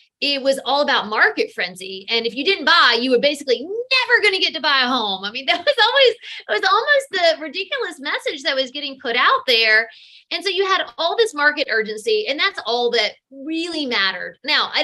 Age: 30-49